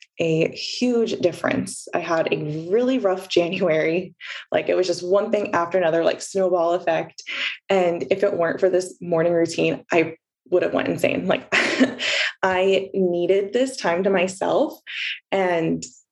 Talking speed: 155 wpm